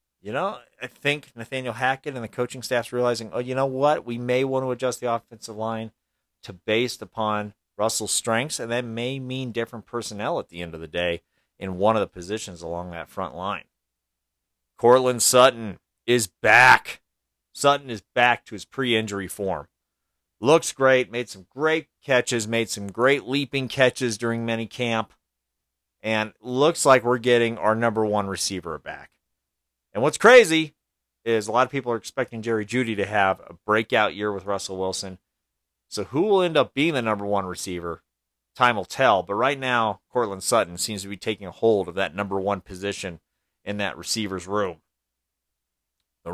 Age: 40-59